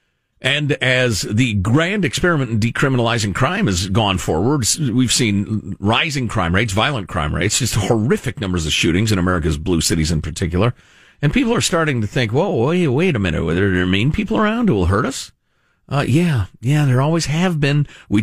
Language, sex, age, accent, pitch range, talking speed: English, male, 50-69, American, 95-145 Hz, 190 wpm